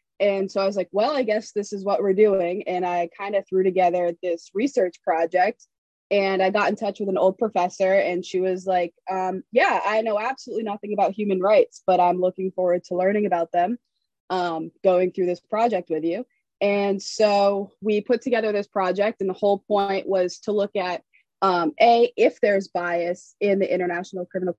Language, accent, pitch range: English, American, 180-205 Hz